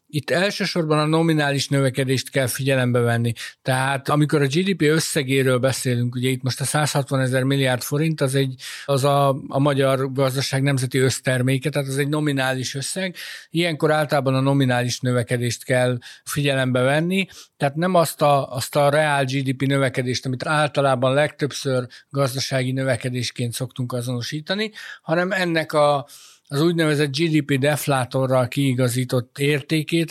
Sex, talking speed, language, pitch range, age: male, 140 wpm, Hungarian, 130-150 Hz, 50-69